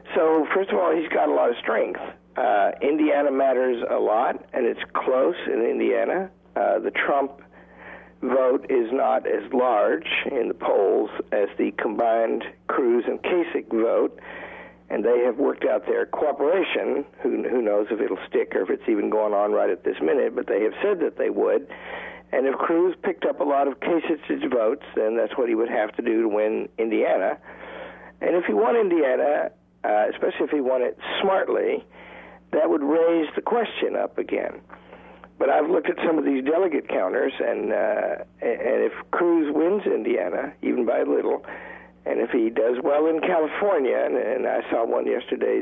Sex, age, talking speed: male, 50-69, 185 wpm